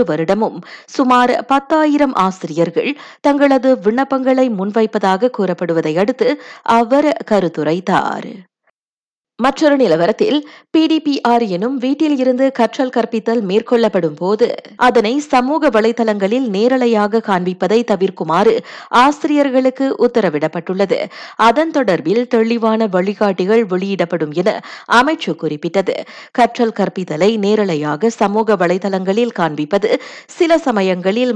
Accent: native